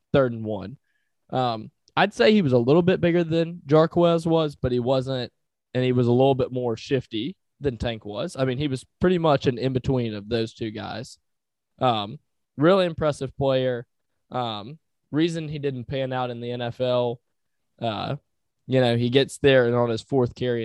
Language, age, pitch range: English, 20-39, 115-140 Hz